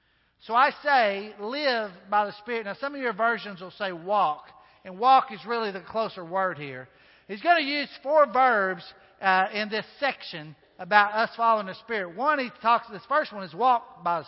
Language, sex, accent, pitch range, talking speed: English, male, American, 190-245 Hz, 200 wpm